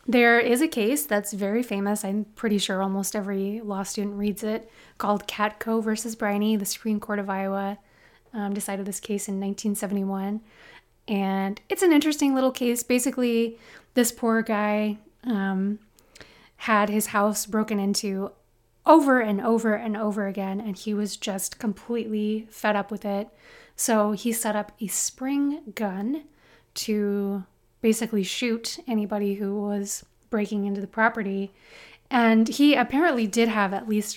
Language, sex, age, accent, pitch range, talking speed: English, female, 20-39, American, 205-230 Hz, 150 wpm